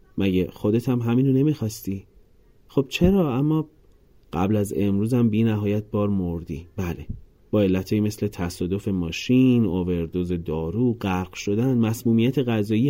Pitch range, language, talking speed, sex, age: 90-120 Hz, Persian, 125 wpm, male, 30-49